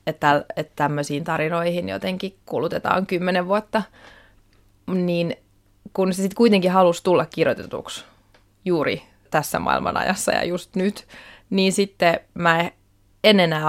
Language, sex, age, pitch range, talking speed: Finnish, female, 20-39, 145-180 Hz, 120 wpm